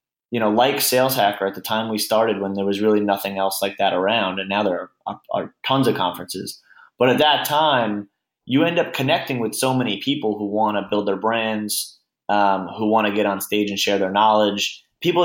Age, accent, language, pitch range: 20-39, American, English, 95-110 Hz